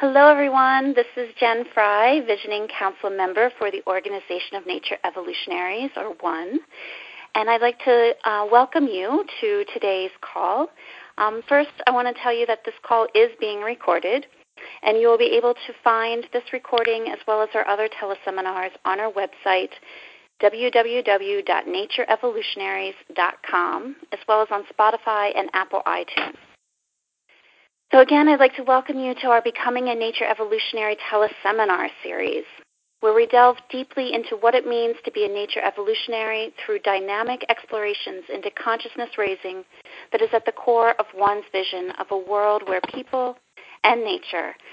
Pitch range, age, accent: 205-255 Hz, 40-59, American